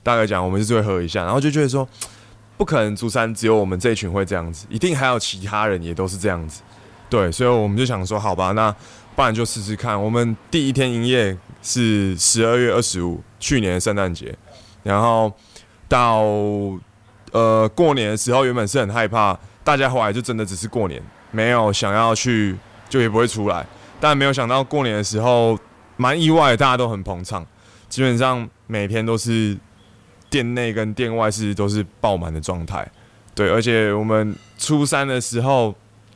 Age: 20-39